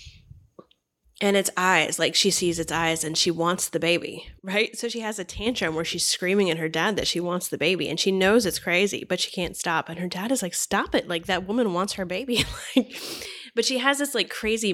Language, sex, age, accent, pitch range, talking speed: English, female, 10-29, American, 170-200 Hz, 240 wpm